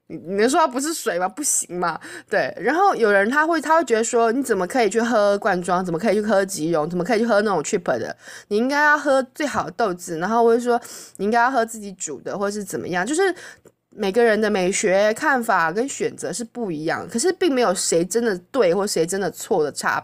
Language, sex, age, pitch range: Chinese, female, 20-39, 185-260 Hz